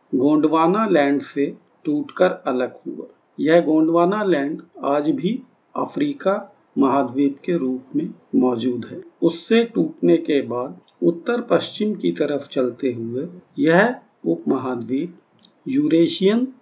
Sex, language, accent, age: male, Hindi, native, 50-69